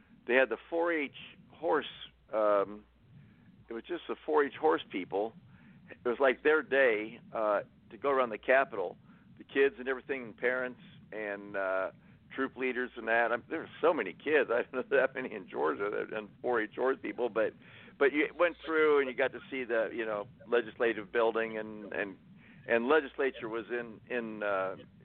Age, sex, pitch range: 50-69, male, 110-130 Hz